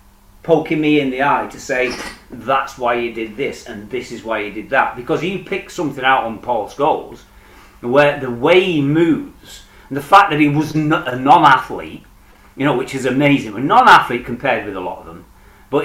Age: 40-59